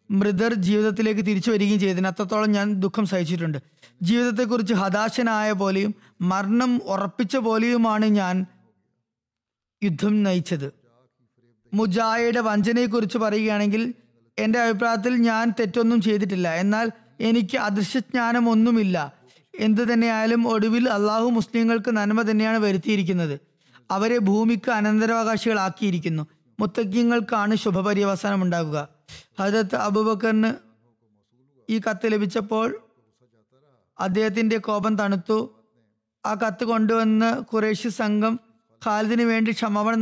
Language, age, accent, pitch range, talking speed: Malayalam, 20-39, native, 195-225 Hz, 85 wpm